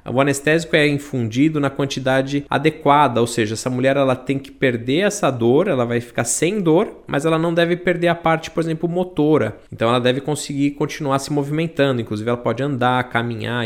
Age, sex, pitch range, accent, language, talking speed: 20-39, male, 115-155 Hz, Brazilian, Portuguese, 195 wpm